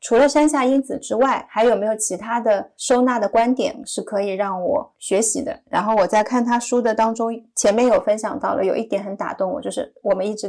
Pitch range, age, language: 210-250 Hz, 30-49, Chinese